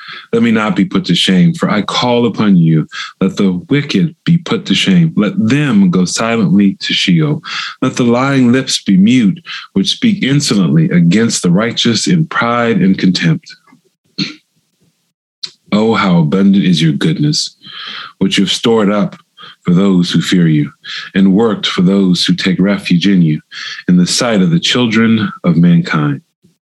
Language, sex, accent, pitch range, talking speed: English, male, American, 110-180 Hz, 165 wpm